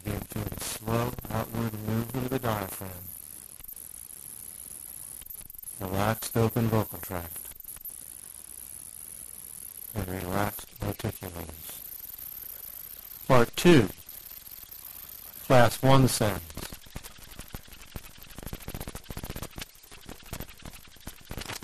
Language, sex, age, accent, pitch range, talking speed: English, male, 60-79, American, 100-120 Hz, 55 wpm